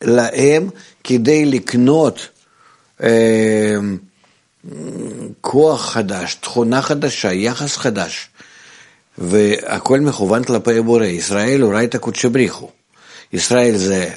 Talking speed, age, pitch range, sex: 85 wpm, 60-79, 100-130 Hz, male